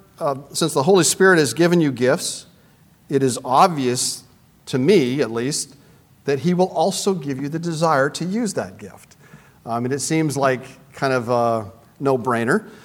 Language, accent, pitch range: English, American, 140-195 Hz